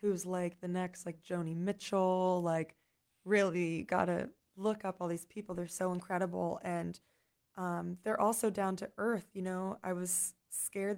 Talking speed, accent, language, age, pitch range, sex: 170 wpm, American, English, 20-39, 175-195 Hz, female